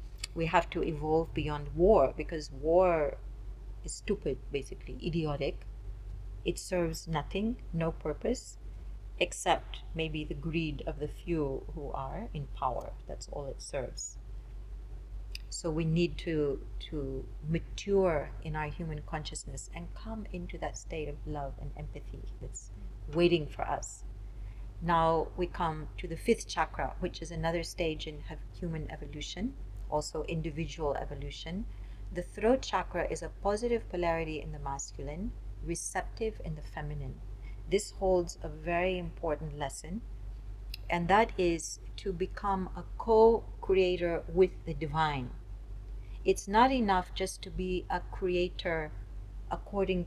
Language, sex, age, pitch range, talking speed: English, female, 40-59, 130-175 Hz, 135 wpm